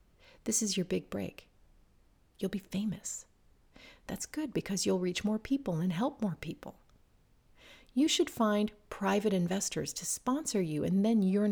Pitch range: 180-225 Hz